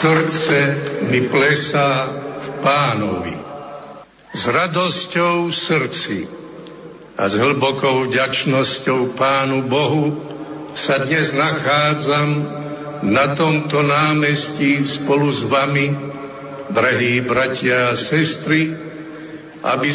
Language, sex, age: Slovak, male, 70-89